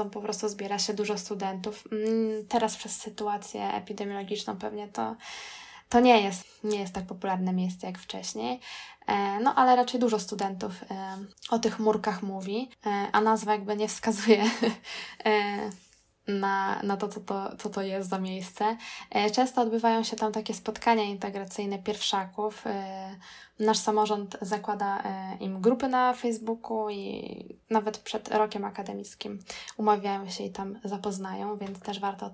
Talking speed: 145 wpm